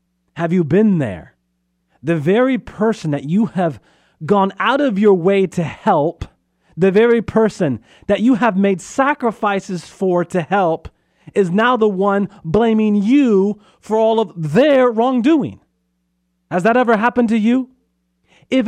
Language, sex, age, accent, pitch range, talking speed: English, male, 30-49, American, 125-190 Hz, 150 wpm